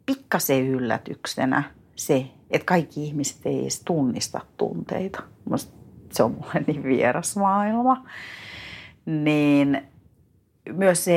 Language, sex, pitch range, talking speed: Finnish, female, 135-175 Hz, 100 wpm